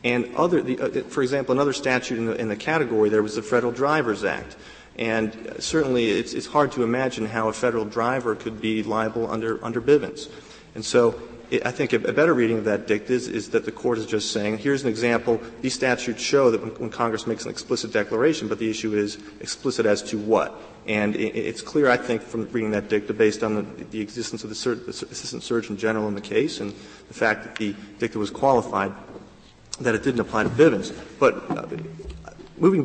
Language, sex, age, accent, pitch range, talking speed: English, male, 40-59, American, 110-130 Hz, 210 wpm